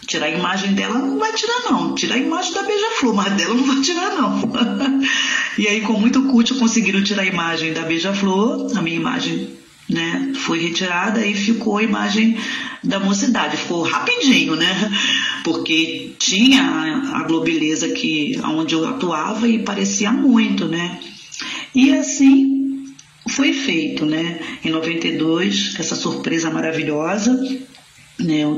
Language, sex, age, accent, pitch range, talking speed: Portuguese, female, 40-59, Brazilian, 160-260 Hz, 140 wpm